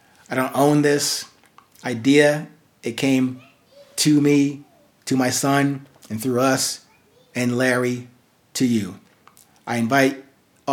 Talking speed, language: 125 wpm, English